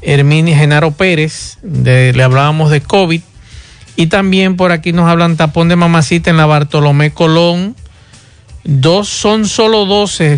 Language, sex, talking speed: Spanish, male, 145 wpm